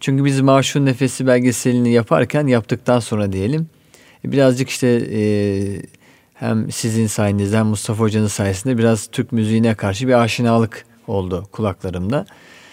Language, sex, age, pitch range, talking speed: Turkish, male, 40-59, 115-150 Hz, 125 wpm